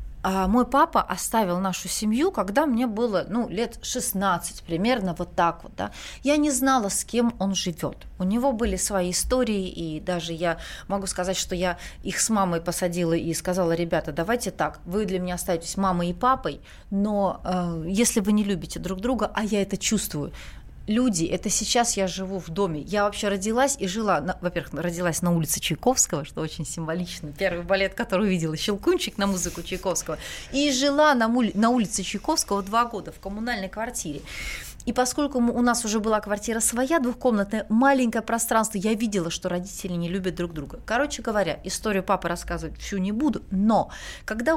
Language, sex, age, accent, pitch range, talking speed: Russian, female, 30-49, native, 180-230 Hz, 175 wpm